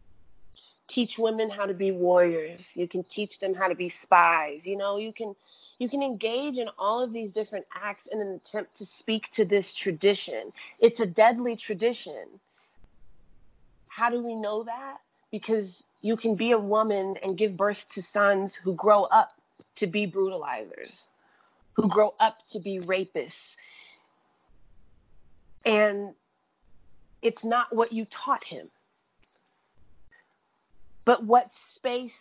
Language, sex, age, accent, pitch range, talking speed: English, female, 30-49, American, 190-235 Hz, 145 wpm